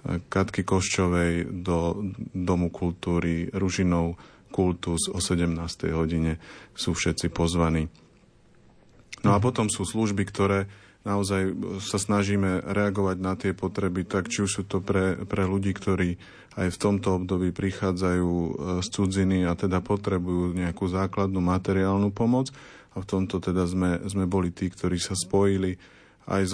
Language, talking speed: Slovak, 140 wpm